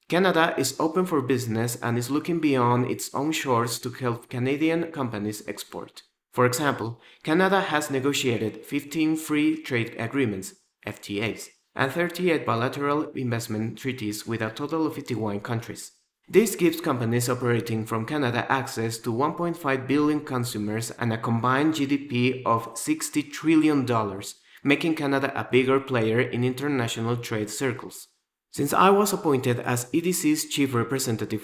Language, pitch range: English, 115-150 Hz